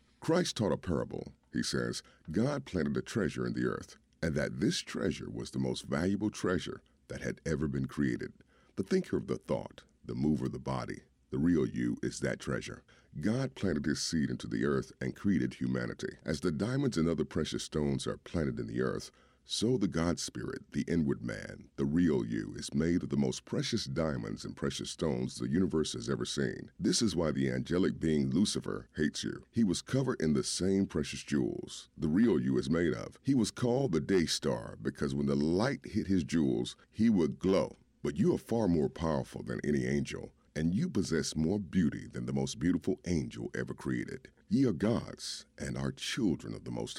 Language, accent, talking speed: English, American, 205 wpm